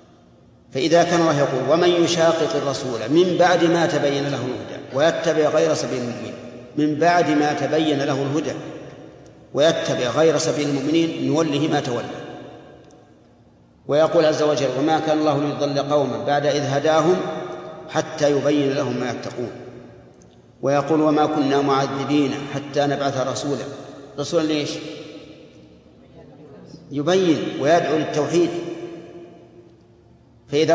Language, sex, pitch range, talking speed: Arabic, male, 135-160 Hz, 115 wpm